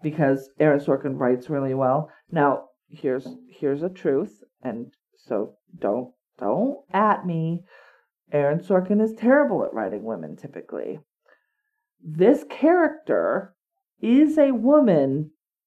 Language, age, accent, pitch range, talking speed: English, 40-59, American, 160-250 Hz, 115 wpm